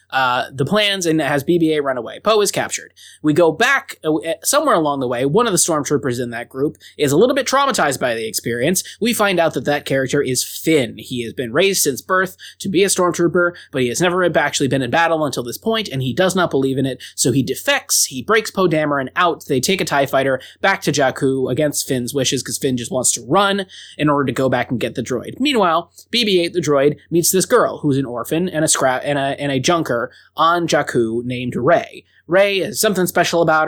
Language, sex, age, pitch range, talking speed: English, male, 20-39, 135-180 Hz, 235 wpm